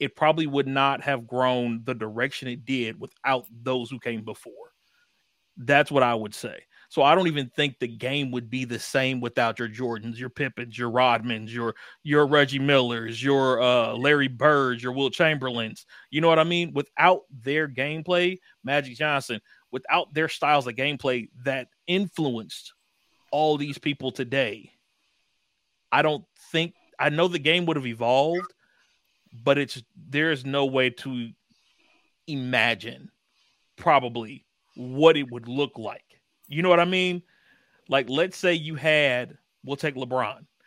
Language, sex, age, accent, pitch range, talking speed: English, male, 30-49, American, 125-160 Hz, 160 wpm